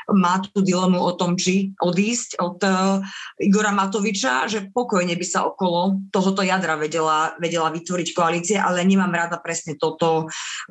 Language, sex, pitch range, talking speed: Slovak, female, 160-195 Hz, 155 wpm